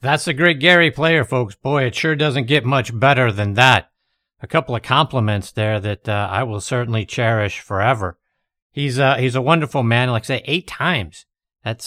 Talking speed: 195 wpm